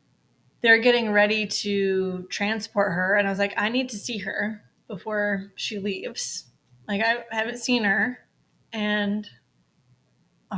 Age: 20-39